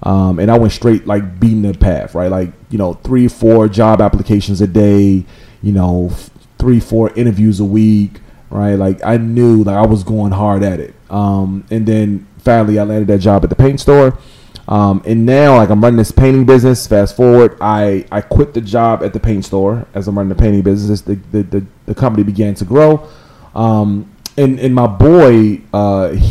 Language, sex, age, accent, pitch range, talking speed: English, male, 30-49, American, 100-120 Hz, 205 wpm